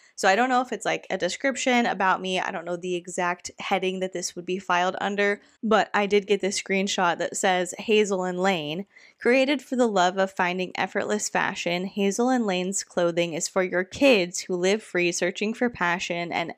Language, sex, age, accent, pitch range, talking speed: English, female, 20-39, American, 180-230 Hz, 205 wpm